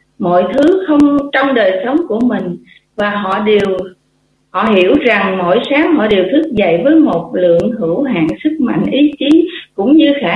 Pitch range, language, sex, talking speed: 190-295 Hz, Vietnamese, female, 185 wpm